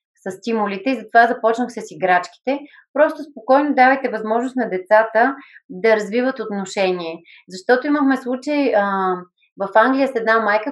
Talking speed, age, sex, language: 140 wpm, 20-39, female, Bulgarian